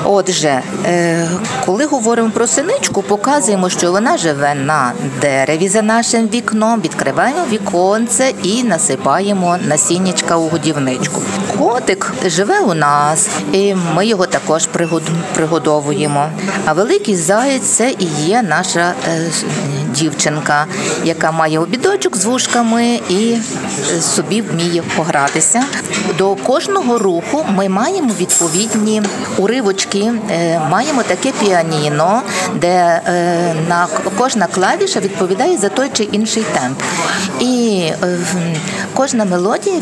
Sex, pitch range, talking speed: female, 170-215 Hz, 115 wpm